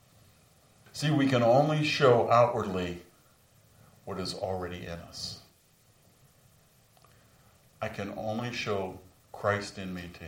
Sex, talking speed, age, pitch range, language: male, 110 wpm, 50-69, 90-120 Hz, English